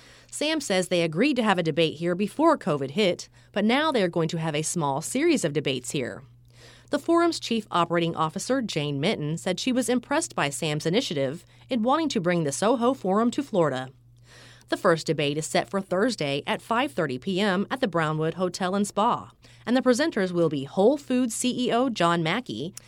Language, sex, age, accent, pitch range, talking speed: English, female, 30-49, American, 155-235 Hz, 190 wpm